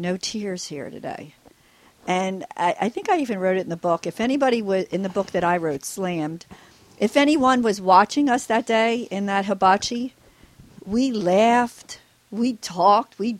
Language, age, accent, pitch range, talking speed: English, 50-69, American, 175-225 Hz, 180 wpm